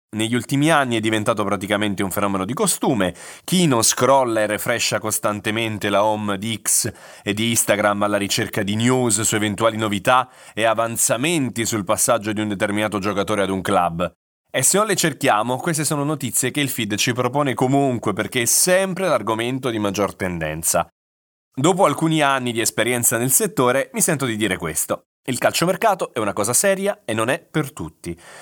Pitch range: 105-135 Hz